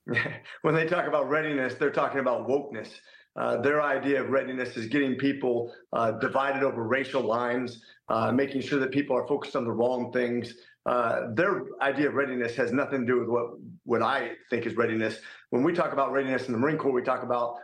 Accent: American